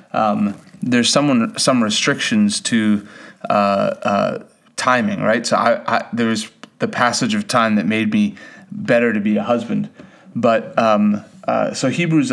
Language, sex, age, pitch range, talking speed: English, male, 30-49, 110-175 Hz, 145 wpm